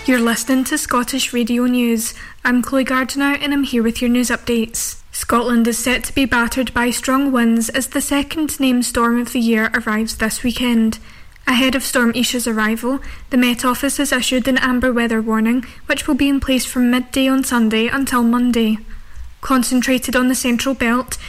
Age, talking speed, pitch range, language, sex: 10-29, 185 wpm, 230-260 Hz, English, female